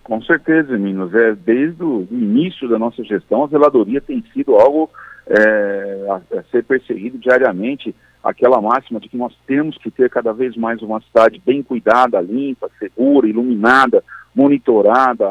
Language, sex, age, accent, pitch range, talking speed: Portuguese, male, 50-69, Brazilian, 115-150 Hz, 155 wpm